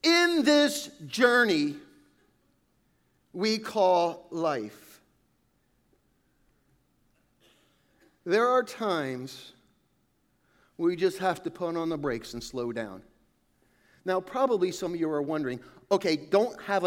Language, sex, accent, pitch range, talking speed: English, male, American, 145-215 Hz, 105 wpm